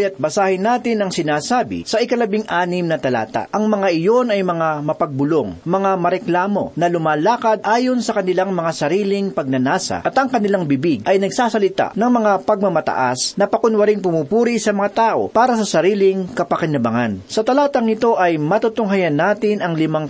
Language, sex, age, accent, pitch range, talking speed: Filipino, male, 40-59, native, 165-220 Hz, 160 wpm